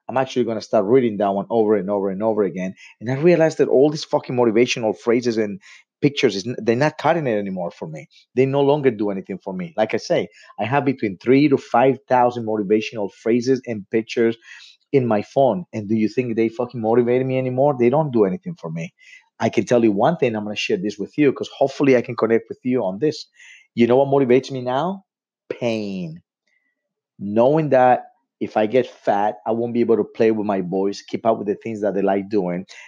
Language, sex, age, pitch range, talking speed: English, male, 30-49, 105-130 Hz, 225 wpm